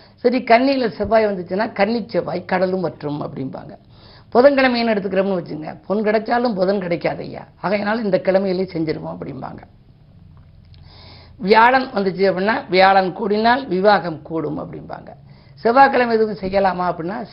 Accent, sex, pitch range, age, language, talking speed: native, female, 170-220 Hz, 50-69, Tamil, 120 wpm